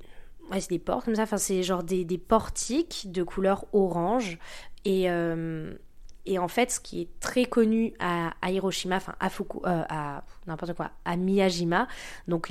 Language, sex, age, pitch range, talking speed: French, female, 20-39, 175-220 Hz, 175 wpm